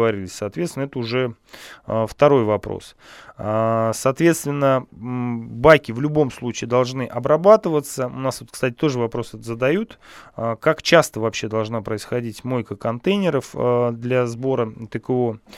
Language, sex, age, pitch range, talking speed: Russian, male, 20-39, 115-140 Hz, 110 wpm